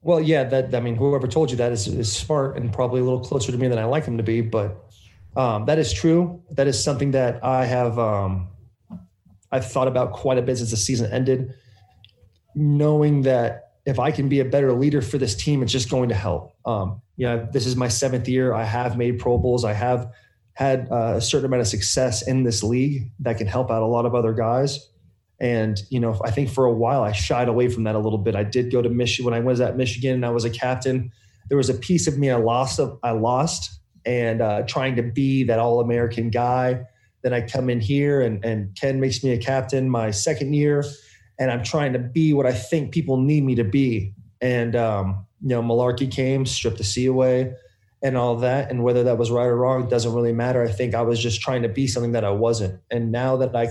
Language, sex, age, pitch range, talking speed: English, male, 20-39, 115-130 Hz, 240 wpm